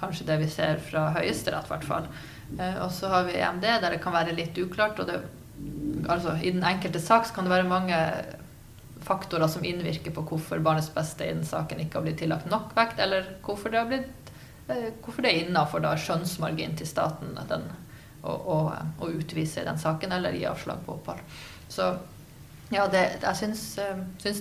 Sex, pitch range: female, 160-190 Hz